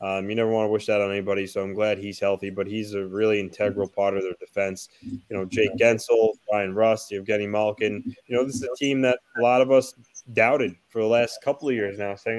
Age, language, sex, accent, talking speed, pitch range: 20-39, English, male, American, 245 wpm, 105-130 Hz